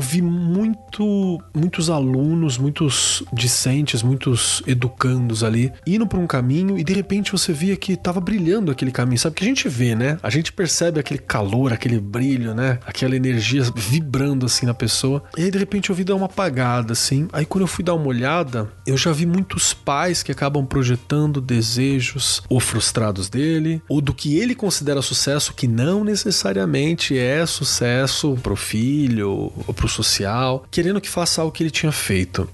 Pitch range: 125-170 Hz